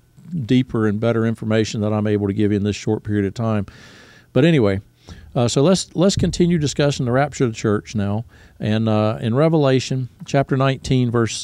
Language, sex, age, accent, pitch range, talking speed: English, male, 50-69, American, 110-145 Hz, 195 wpm